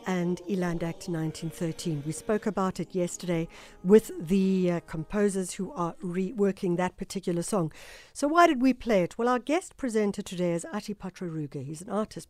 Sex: female